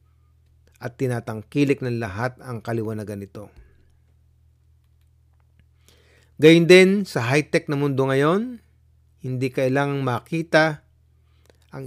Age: 50-69